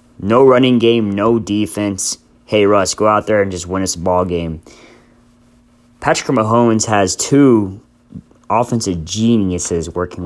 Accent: American